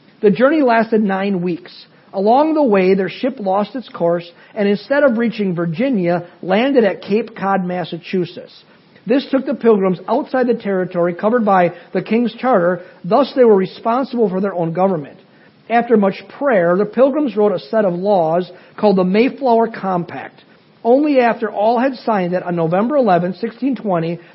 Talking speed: 165 wpm